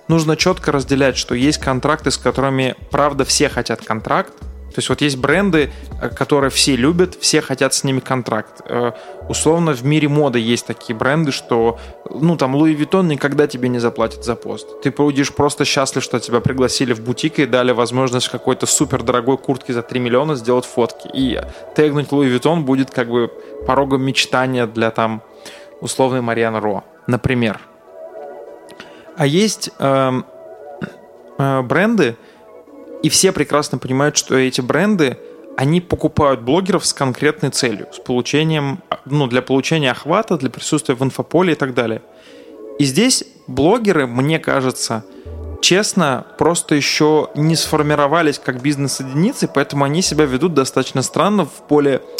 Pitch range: 125-150 Hz